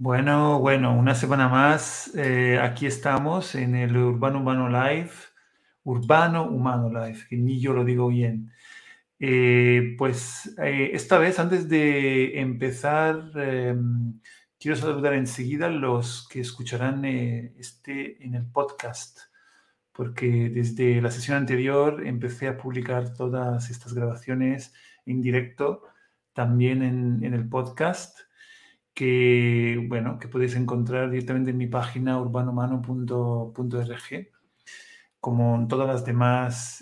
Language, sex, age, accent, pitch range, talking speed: Spanish, male, 50-69, Argentinian, 120-140 Hz, 125 wpm